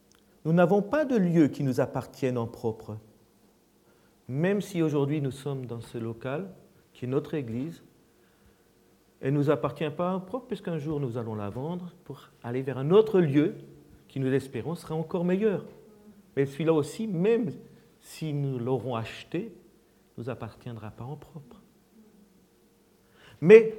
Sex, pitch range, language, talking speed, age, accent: male, 120-180 Hz, French, 155 wpm, 50-69, French